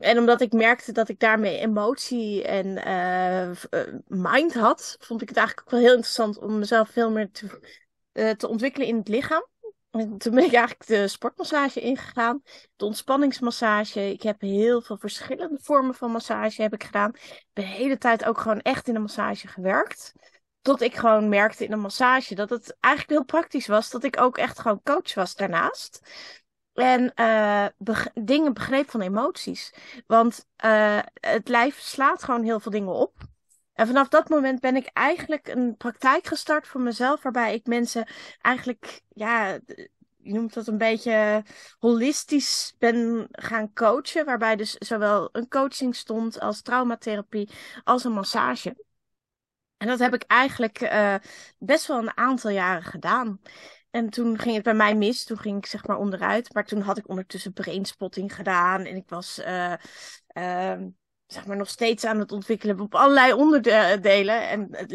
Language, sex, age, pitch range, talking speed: Dutch, female, 20-39, 205-250 Hz, 170 wpm